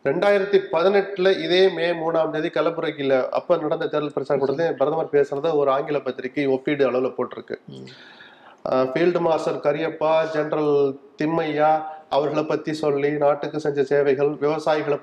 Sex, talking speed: male, 110 wpm